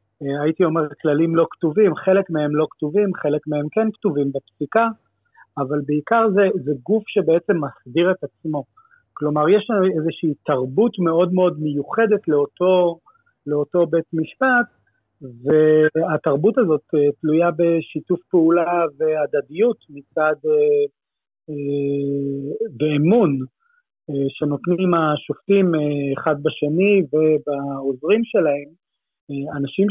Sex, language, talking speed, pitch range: male, Hebrew, 105 wpm, 145-185 Hz